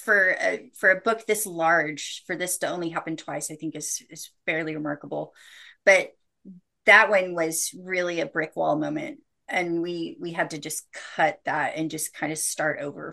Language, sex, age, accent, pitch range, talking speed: English, female, 30-49, American, 160-195 Hz, 190 wpm